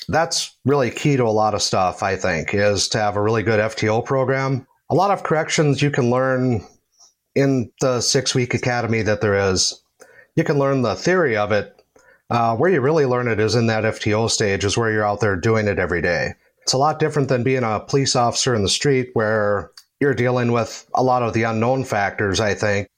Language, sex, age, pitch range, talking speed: English, male, 30-49, 110-135 Hz, 215 wpm